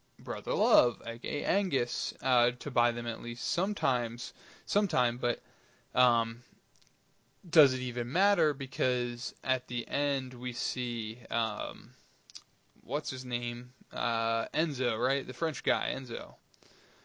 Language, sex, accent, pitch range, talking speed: English, male, American, 120-140 Hz, 125 wpm